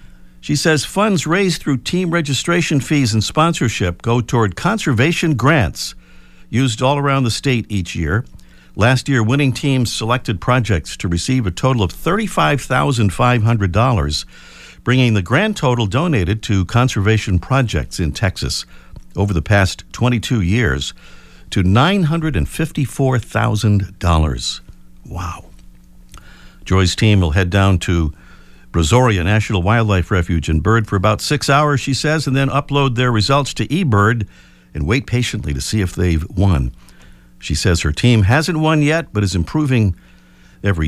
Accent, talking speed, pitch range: American, 140 wpm, 85-130 Hz